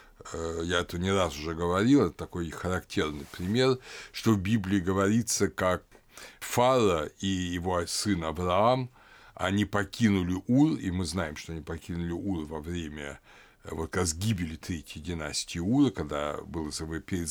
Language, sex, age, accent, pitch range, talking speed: Russian, male, 60-79, native, 85-115 Hz, 140 wpm